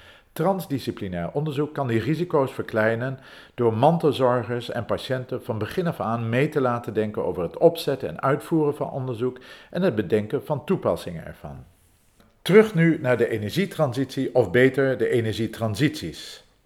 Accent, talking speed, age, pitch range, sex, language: Dutch, 145 wpm, 50-69, 110-150 Hz, male, Dutch